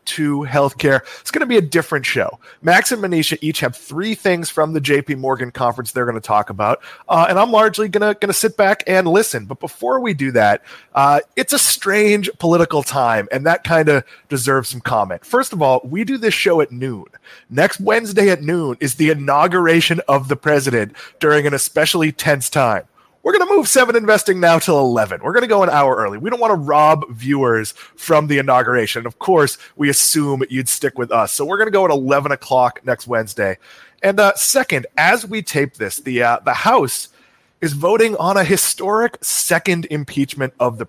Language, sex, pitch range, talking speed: English, male, 135-200 Hz, 210 wpm